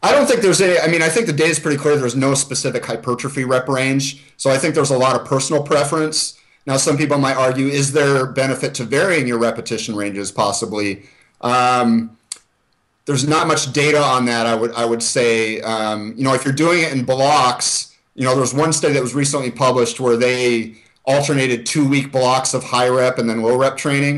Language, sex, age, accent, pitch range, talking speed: English, male, 30-49, American, 115-145 Hz, 215 wpm